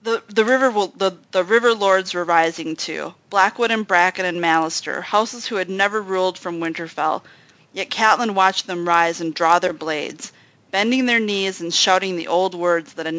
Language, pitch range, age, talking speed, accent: English, 165-200 Hz, 30-49, 185 wpm, American